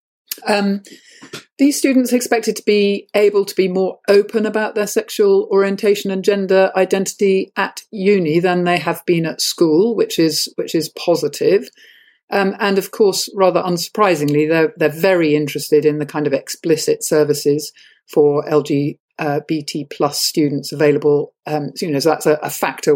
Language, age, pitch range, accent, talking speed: English, 50-69, 150-205 Hz, British, 160 wpm